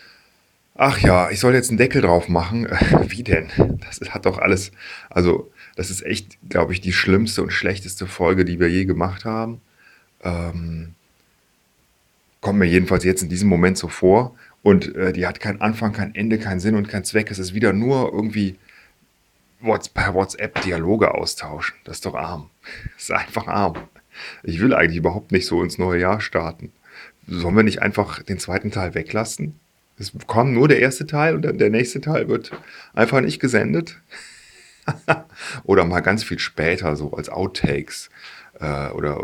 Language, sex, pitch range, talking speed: German, male, 85-105 Hz, 175 wpm